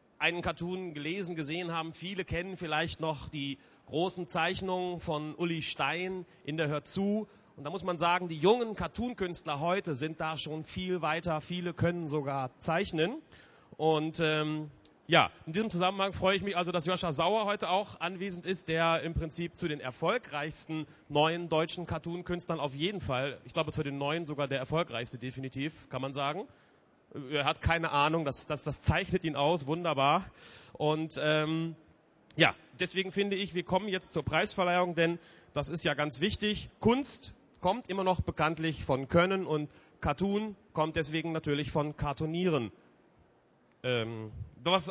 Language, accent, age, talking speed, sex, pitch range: German, German, 40-59, 165 wpm, male, 150-190 Hz